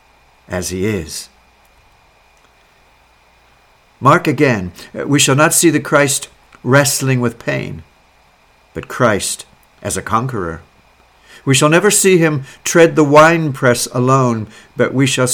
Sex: male